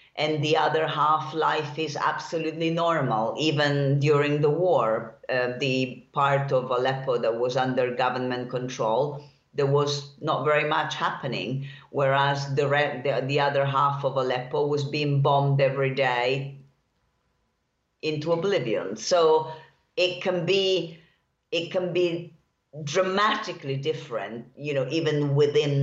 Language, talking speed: English, 130 wpm